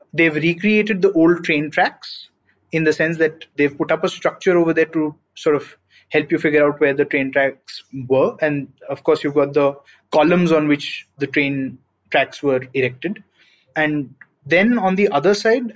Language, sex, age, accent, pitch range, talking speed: English, male, 20-39, Indian, 140-165 Hz, 185 wpm